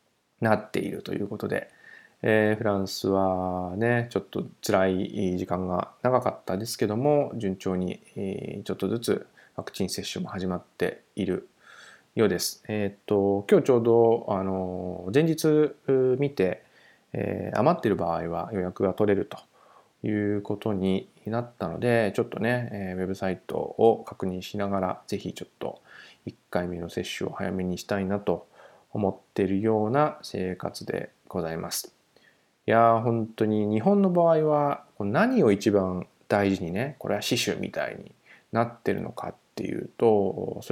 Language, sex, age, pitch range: Japanese, male, 20-39, 95-125 Hz